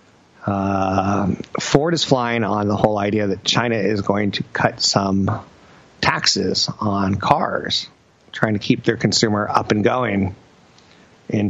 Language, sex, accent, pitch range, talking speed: English, male, American, 100-115 Hz, 140 wpm